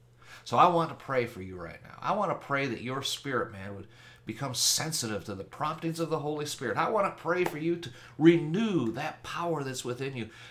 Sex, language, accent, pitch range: male, English, American, 115-150 Hz